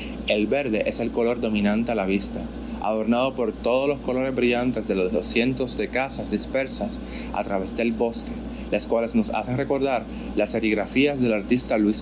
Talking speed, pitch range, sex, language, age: 175 wpm, 110-140 Hz, male, Spanish, 30-49